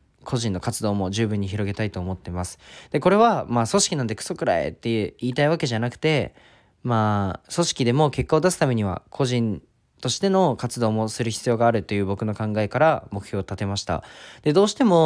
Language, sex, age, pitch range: Japanese, male, 20-39, 105-155 Hz